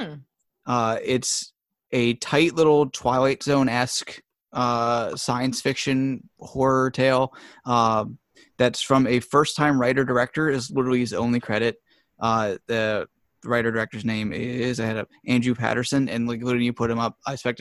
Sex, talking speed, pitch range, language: male, 155 wpm, 115-130 Hz, English